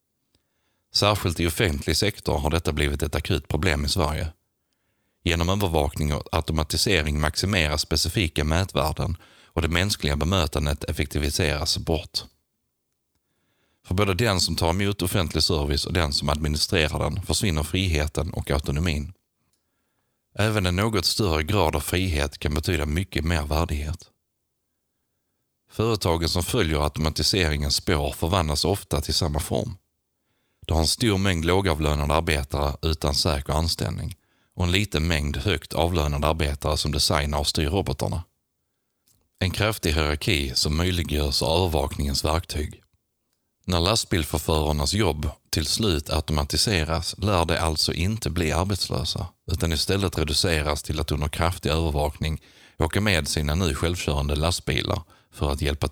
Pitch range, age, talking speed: 75-95 Hz, 30-49, 130 wpm